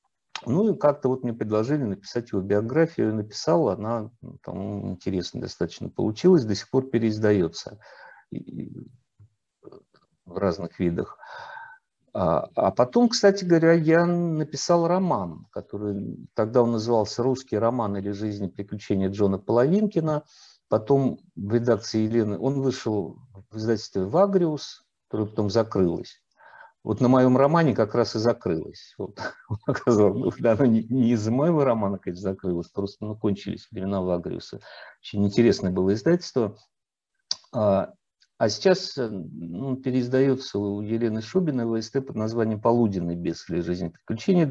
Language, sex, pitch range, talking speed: Russian, male, 105-145 Hz, 130 wpm